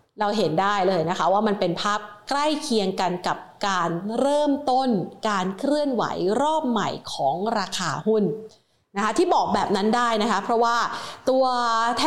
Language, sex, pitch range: Thai, female, 215-275 Hz